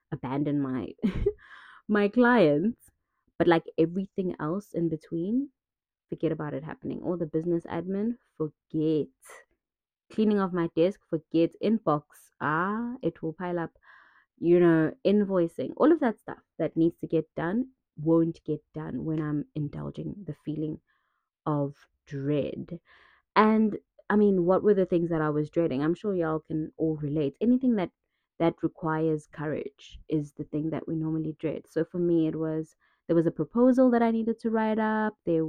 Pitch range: 155-195 Hz